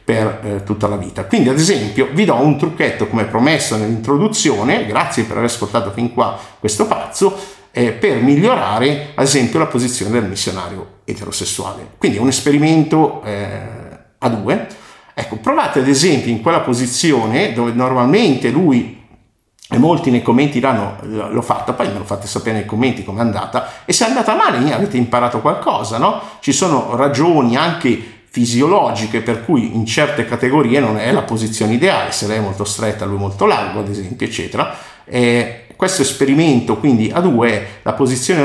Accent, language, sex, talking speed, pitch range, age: native, Italian, male, 170 wpm, 105-135 Hz, 50-69